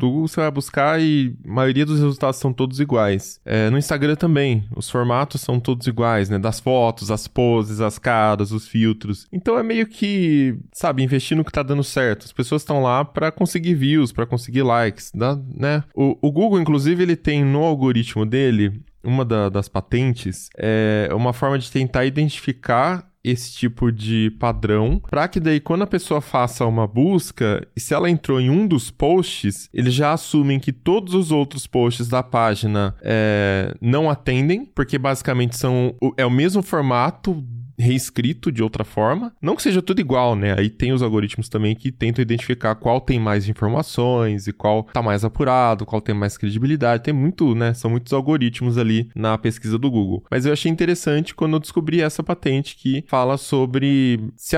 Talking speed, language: 185 wpm, Portuguese